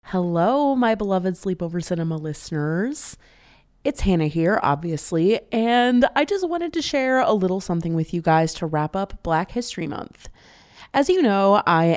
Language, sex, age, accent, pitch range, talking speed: English, female, 20-39, American, 160-205 Hz, 160 wpm